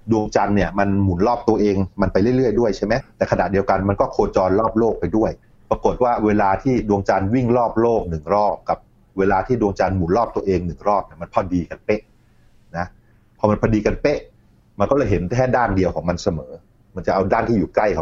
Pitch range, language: 95-120 Hz, Thai